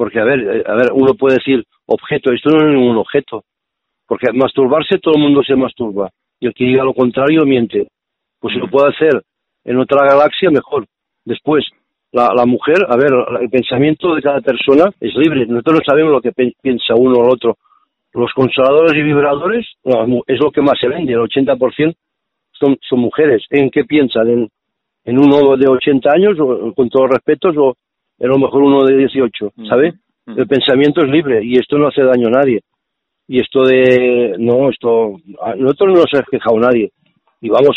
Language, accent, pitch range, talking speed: Spanish, Spanish, 125-145 Hz, 200 wpm